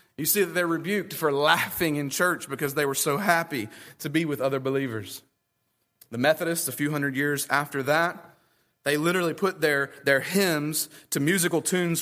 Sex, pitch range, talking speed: male, 140-195 Hz, 180 wpm